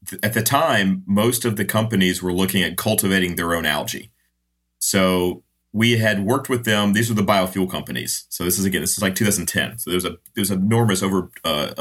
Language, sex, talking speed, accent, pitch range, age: English, male, 205 wpm, American, 90-105 Hz, 30-49